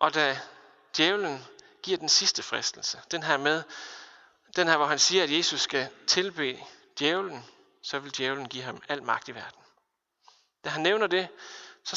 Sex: male